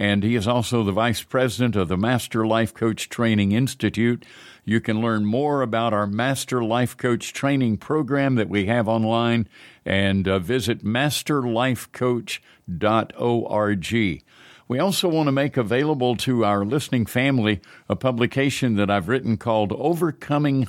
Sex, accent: male, American